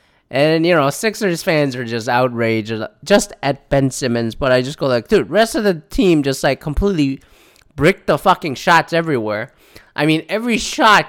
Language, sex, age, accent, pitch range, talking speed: English, male, 20-39, American, 130-180 Hz, 185 wpm